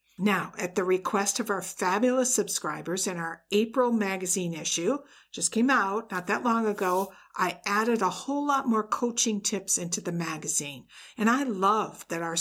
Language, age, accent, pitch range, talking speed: English, 50-69, American, 180-230 Hz, 175 wpm